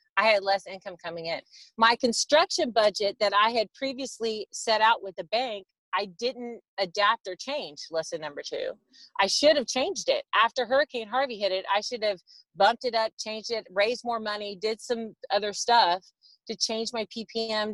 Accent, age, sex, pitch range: American, 30-49, female, 195-265 Hz